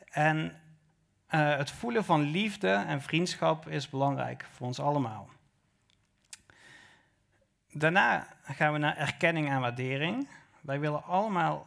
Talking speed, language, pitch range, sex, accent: 120 wpm, Dutch, 140-170 Hz, male, Dutch